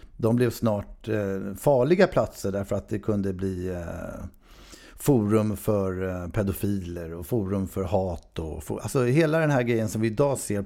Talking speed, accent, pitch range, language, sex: 145 wpm, native, 100-125 Hz, Swedish, male